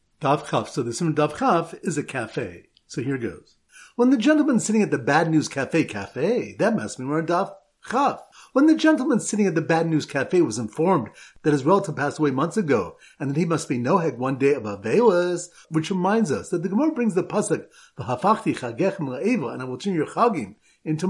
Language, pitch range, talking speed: English, 145-200 Hz, 210 wpm